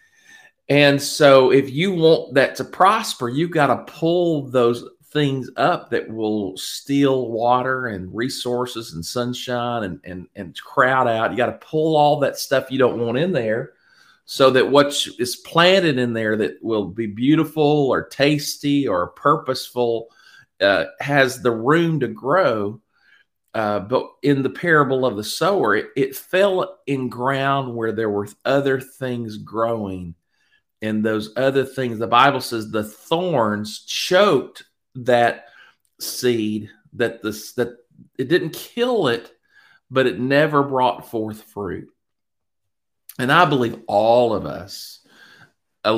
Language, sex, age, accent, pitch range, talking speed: English, male, 40-59, American, 110-145 Hz, 145 wpm